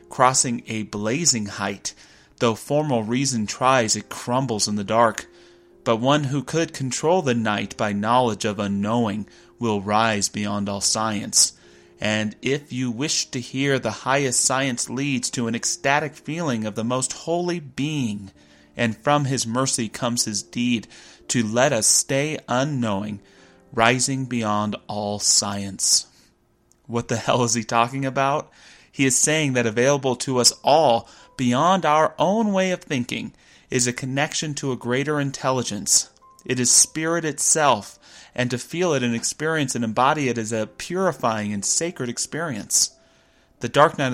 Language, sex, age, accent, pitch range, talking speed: English, male, 30-49, American, 110-135 Hz, 155 wpm